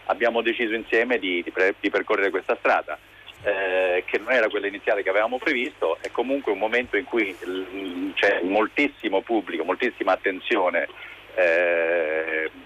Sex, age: male, 40-59